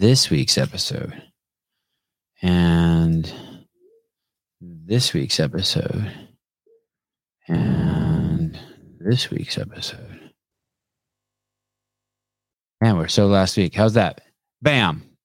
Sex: male